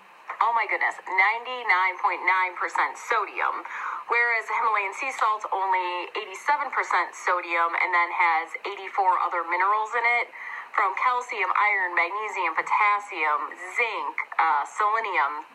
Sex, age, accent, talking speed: female, 30-49, American, 110 wpm